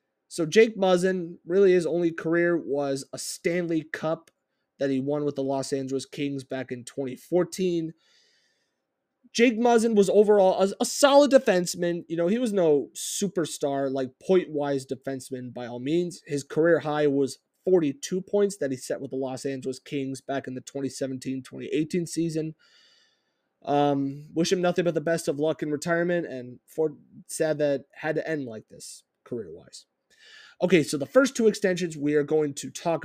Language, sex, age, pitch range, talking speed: English, male, 20-39, 140-195 Hz, 175 wpm